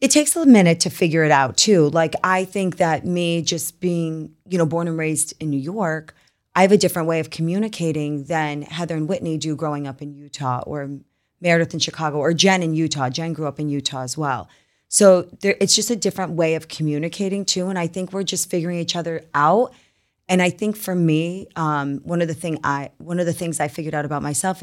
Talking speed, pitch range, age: 230 wpm, 150-175 Hz, 20-39